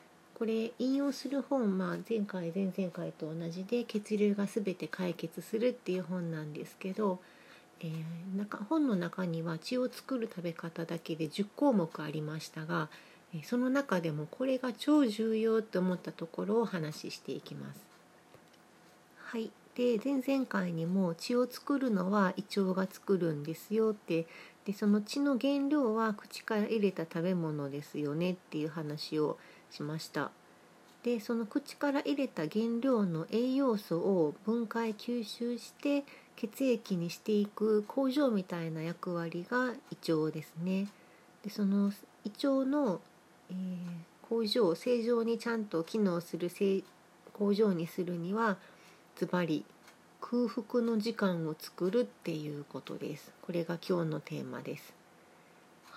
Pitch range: 170-235 Hz